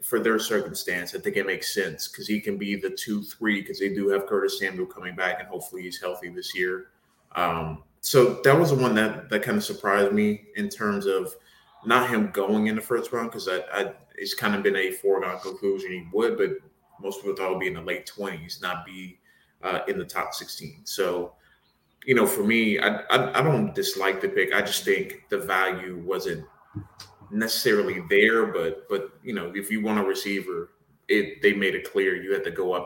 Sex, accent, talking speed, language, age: male, American, 220 wpm, English, 20-39